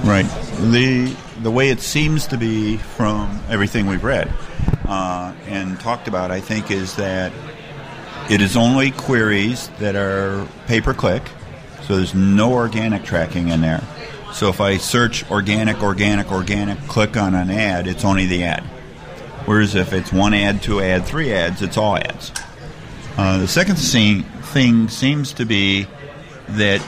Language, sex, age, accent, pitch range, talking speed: English, male, 50-69, American, 95-125 Hz, 155 wpm